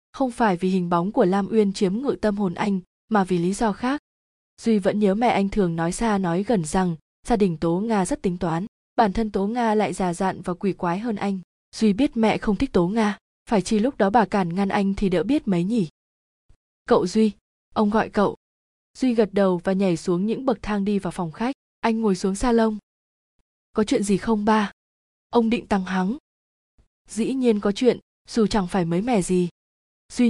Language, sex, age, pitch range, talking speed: Vietnamese, female, 20-39, 190-225 Hz, 220 wpm